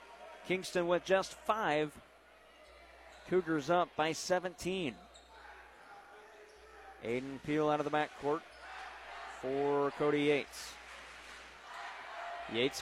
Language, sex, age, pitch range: English, male, 30-49, 140-175 Hz